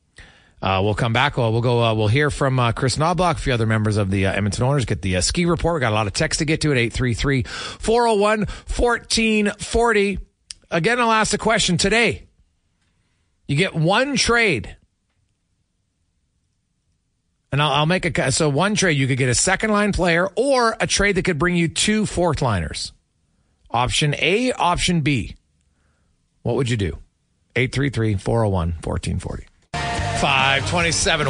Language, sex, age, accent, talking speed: English, male, 40-59, American, 165 wpm